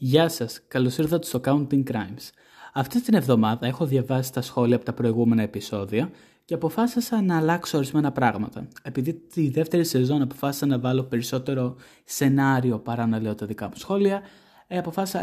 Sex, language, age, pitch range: male, Greek, 20-39, 125-195 Hz